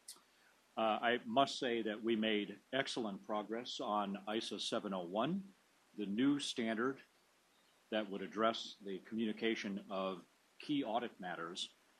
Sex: male